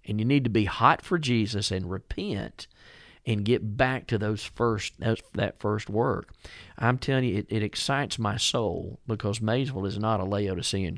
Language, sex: English, male